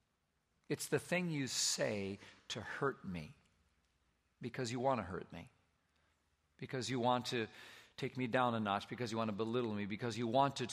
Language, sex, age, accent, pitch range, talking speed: English, male, 50-69, American, 125-195 Hz, 185 wpm